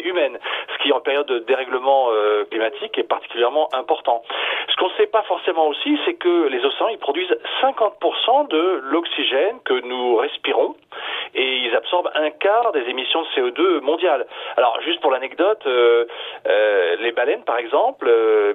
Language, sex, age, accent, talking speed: French, male, 40-59, French, 170 wpm